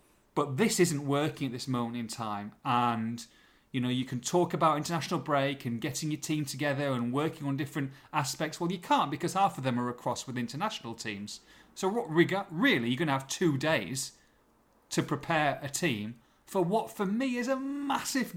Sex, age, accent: male, 30-49, British